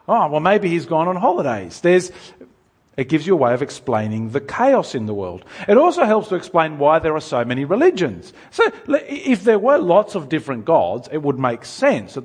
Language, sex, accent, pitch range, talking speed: English, male, Australian, 130-185 Hz, 215 wpm